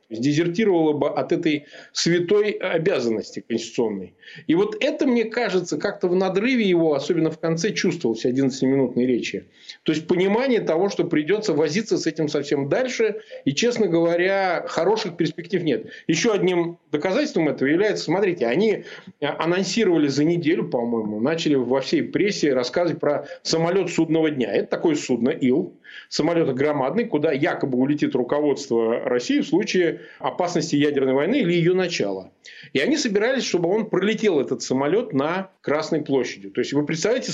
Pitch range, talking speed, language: 150-215 Hz, 150 wpm, Russian